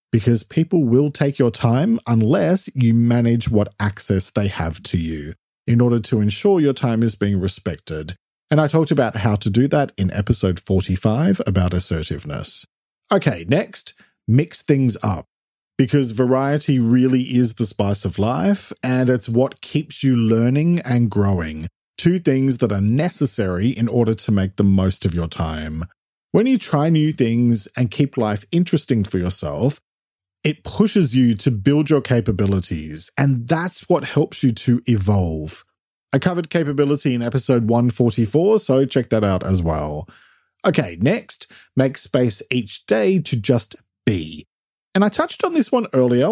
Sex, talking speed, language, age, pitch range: male, 160 wpm, English, 40-59, 105-145 Hz